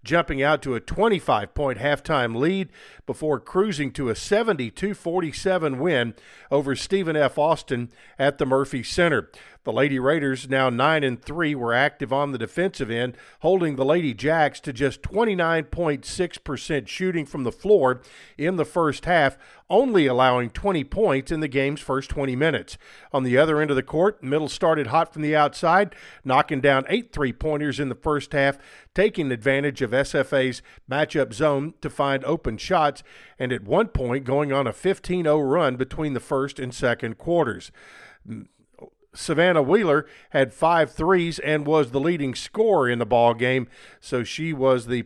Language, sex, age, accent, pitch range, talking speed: English, male, 50-69, American, 130-160 Hz, 160 wpm